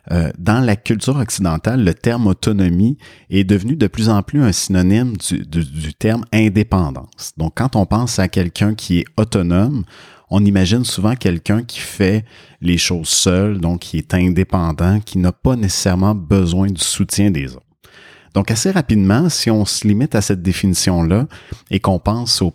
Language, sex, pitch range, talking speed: French, male, 90-110 Hz, 170 wpm